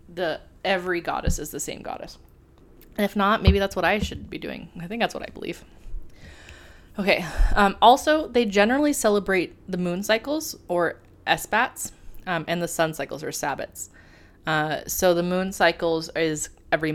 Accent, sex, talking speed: American, female, 170 wpm